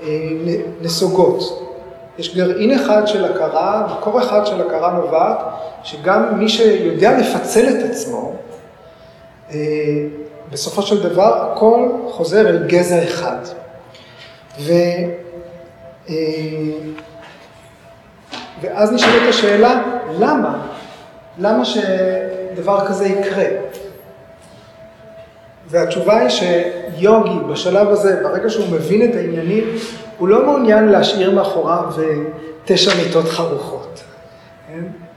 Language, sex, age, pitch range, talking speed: Hebrew, male, 30-49, 165-210 Hz, 90 wpm